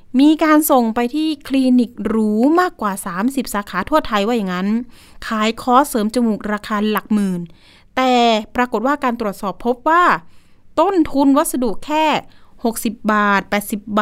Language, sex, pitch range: Thai, female, 205-250 Hz